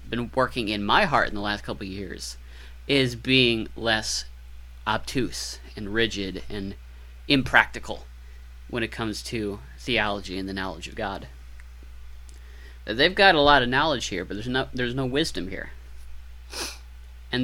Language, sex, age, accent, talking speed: English, male, 30-49, American, 155 wpm